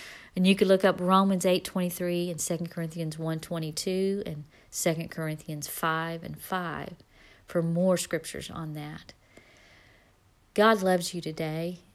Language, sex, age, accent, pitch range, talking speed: English, female, 40-59, American, 160-190 Hz, 130 wpm